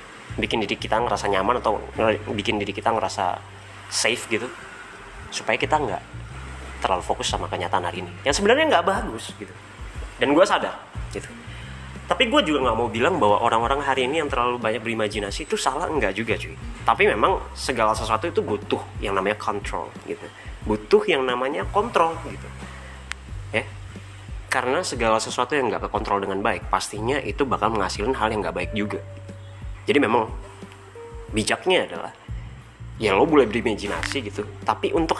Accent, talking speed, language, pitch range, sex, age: native, 160 wpm, Indonesian, 95-135 Hz, male, 20-39